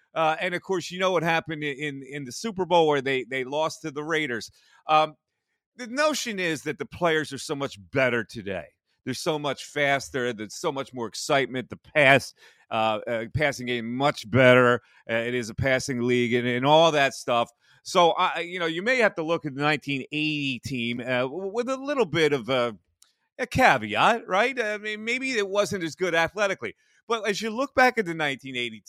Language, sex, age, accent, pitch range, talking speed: English, male, 40-59, American, 135-220 Hz, 210 wpm